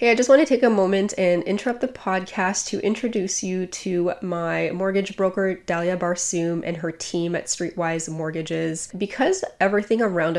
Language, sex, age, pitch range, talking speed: English, female, 20-39, 170-190 Hz, 175 wpm